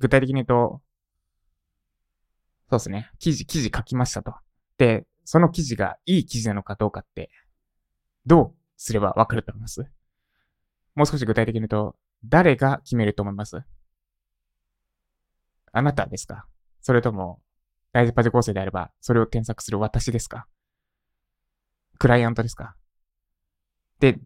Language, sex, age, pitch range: Japanese, male, 20-39, 100-140 Hz